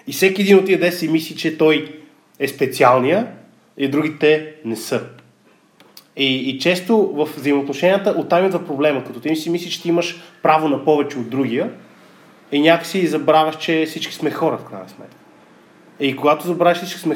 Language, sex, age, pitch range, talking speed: Bulgarian, male, 30-49, 140-175 Hz, 170 wpm